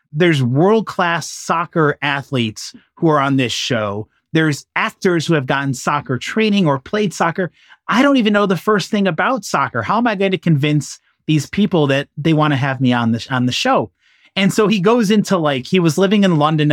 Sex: male